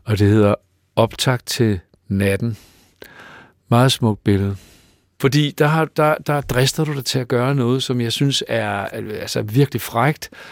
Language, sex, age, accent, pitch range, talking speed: Danish, male, 60-79, native, 105-135 Hz, 150 wpm